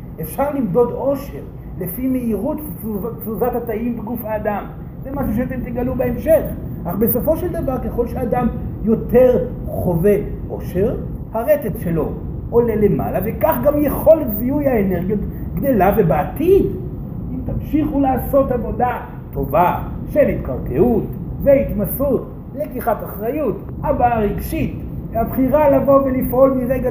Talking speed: 115 wpm